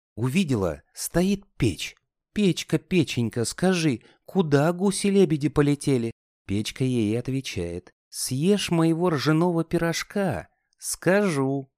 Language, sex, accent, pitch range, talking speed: Russian, male, native, 115-175 Hz, 85 wpm